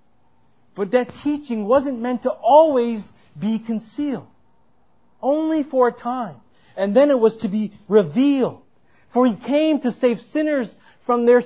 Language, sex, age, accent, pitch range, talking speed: English, male, 40-59, American, 210-275 Hz, 145 wpm